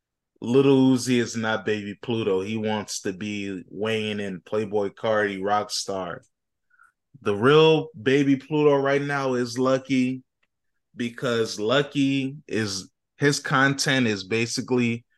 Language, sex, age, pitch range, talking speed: English, male, 20-39, 110-130 Hz, 125 wpm